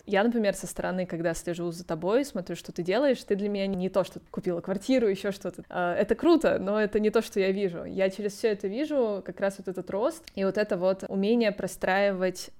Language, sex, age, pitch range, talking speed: Russian, female, 20-39, 180-210 Hz, 225 wpm